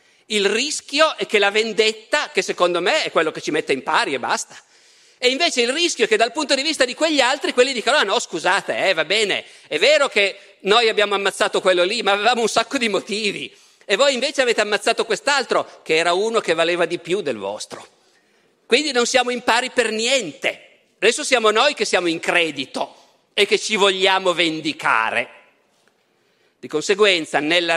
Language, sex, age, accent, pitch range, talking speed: Italian, male, 50-69, native, 200-285 Hz, 195 wpm